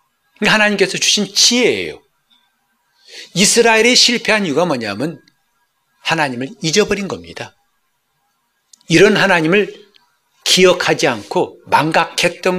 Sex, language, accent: male, Korean, native